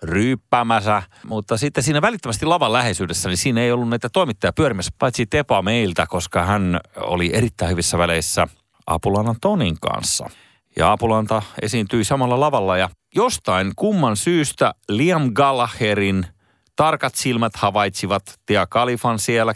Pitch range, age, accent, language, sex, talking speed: 100-150 Hz, 30-49, native, Finnish, male, 130 wpm